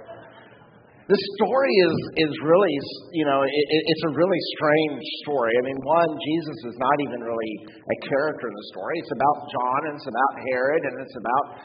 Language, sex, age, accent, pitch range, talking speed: English, male, 50-69, American, 125-165 Hz, 180 wpm